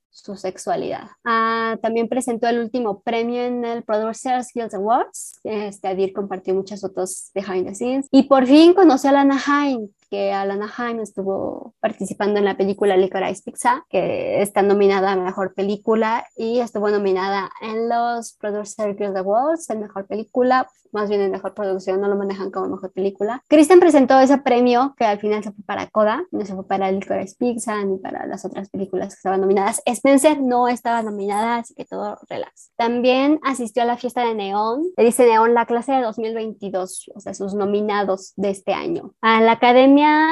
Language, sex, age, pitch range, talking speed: Spanish, male, 20-39, 200-250 Hz, 185 wpm